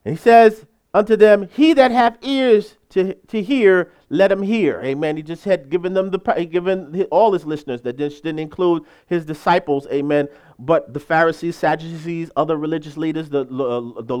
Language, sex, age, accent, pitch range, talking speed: English, male, 40-59, American, 160-255 Hz, 180 wpm